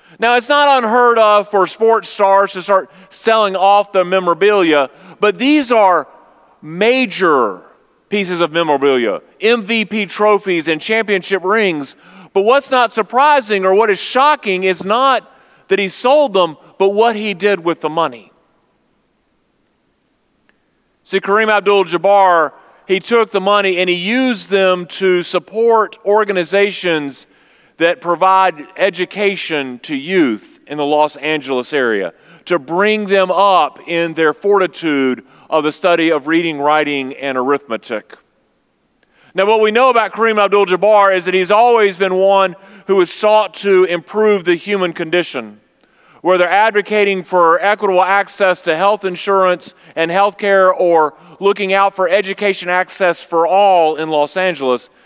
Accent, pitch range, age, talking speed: American, 170-210 Hz, 40-59, 140 wpm